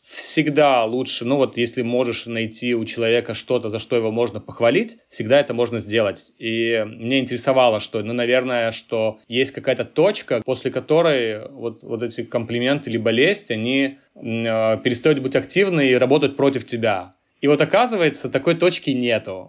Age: 20-39